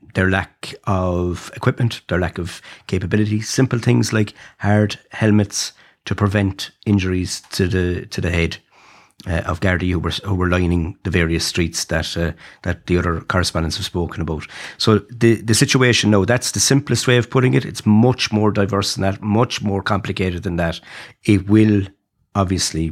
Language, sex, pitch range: English, male, 90-105 Hz